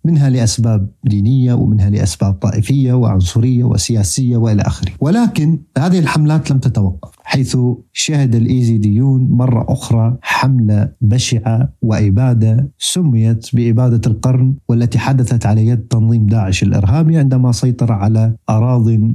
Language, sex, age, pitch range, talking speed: Arabic, male, 50-69, 110-135 Hz, 115 wpm